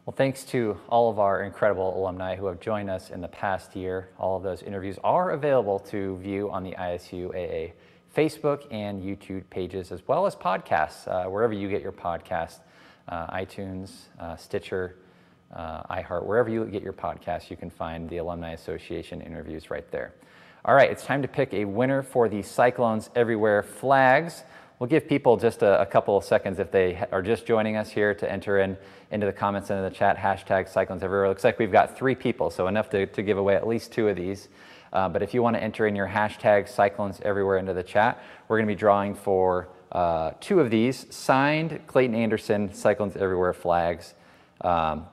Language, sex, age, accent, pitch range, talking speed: English, male, 20-39, American, 90-110 Hz, 200 wpm